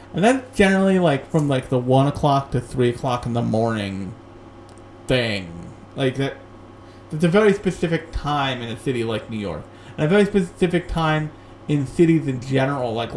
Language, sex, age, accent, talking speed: English, male, 30-49, American, 180 wpm